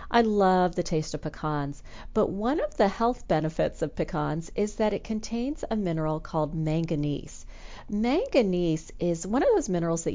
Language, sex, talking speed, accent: English, female, 170 wpm, American